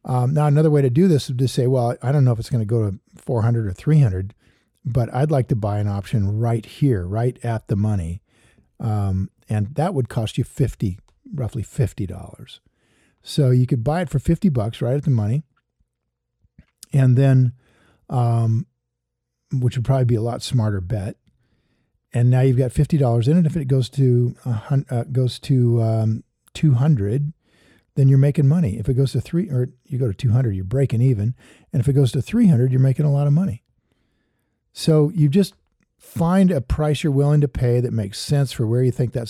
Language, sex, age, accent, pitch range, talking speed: English, male, 50-69, American, 110-140 Hz, 205 wpm